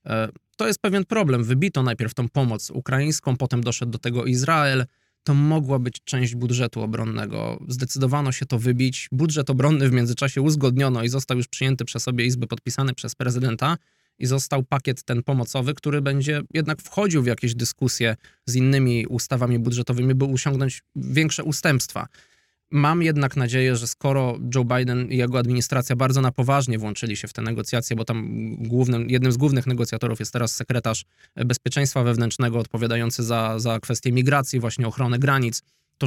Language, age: Polish, 20-39